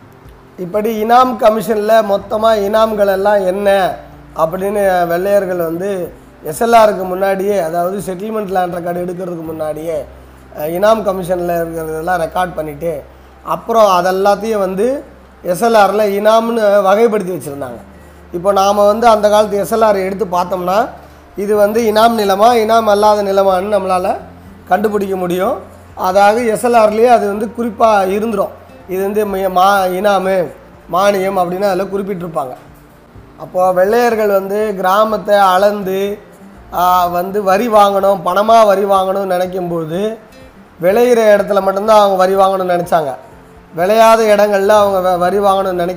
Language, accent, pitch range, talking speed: Tamil, native, 180-210 Hz, 115 wpm